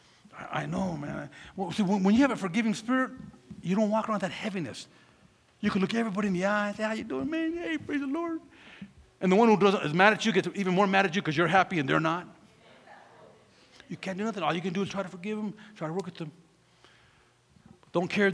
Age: 50-69